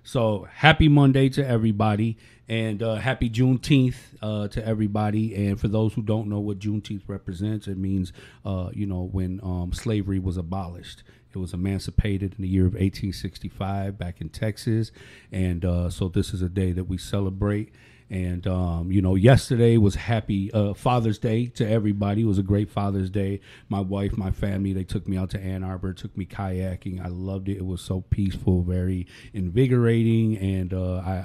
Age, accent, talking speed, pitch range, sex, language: 40-59, American, 185 wpm, 95-110 Hz, male, English